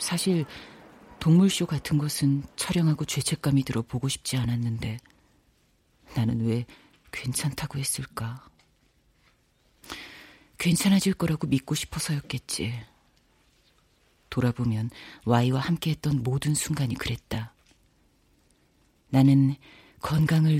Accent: native